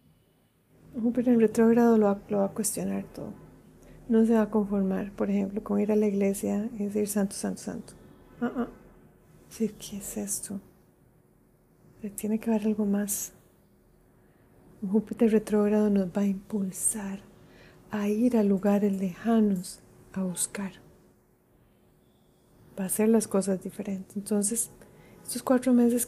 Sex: female